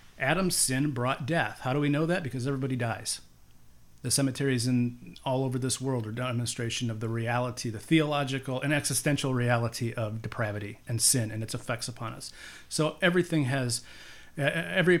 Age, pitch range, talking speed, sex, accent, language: 40-59, 105-140 Hz, 170 wpm, male, American, English